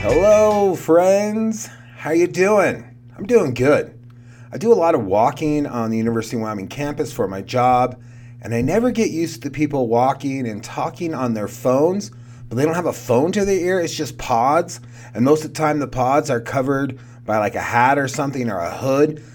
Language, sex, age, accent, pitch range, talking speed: English, male, 30-49, American, 120-150 Hz, 205 wpm